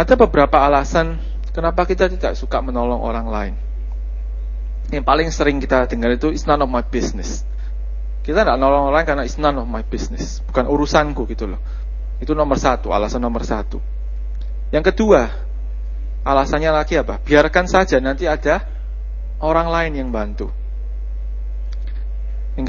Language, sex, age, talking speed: Malay, male, 30-49, 150 wpm